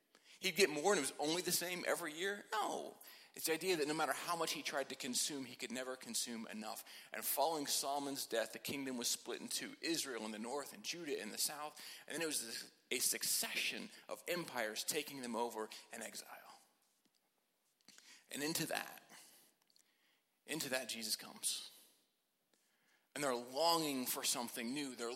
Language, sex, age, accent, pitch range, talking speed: English, male, 30-49, American, 130-170 Hz, 175 wpm